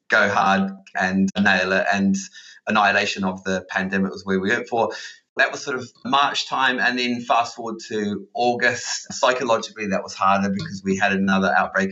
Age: 30-49